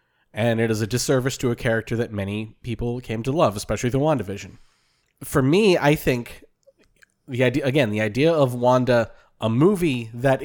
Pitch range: 110-130 Hz